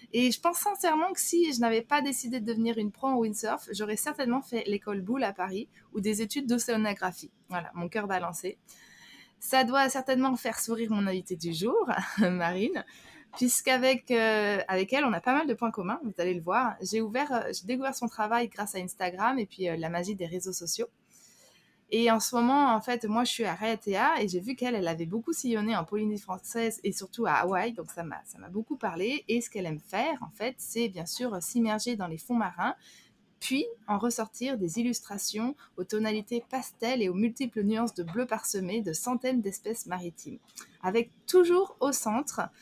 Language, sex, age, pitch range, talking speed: French, female, 20-39, 195-240 Hz, 205 wpm